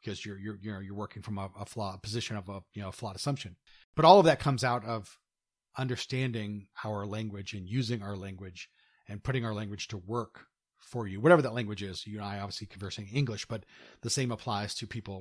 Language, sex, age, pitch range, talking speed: English, male, 40-59, 100-125 Hz, 215 wpm